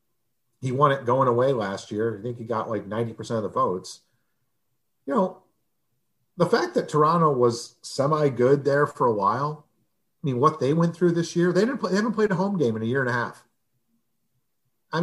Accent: American